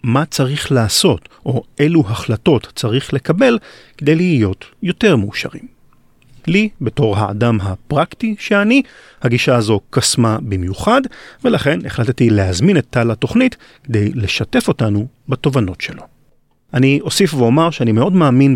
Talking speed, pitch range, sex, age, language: 125 wpm, 110-165 Hz, male, 40-59, Hebrew